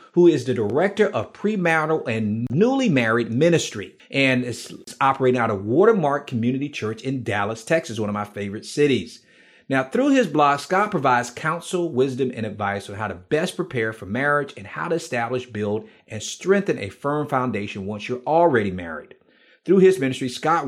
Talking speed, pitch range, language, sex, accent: 175 wpm, 115-165 Hz, English, male, American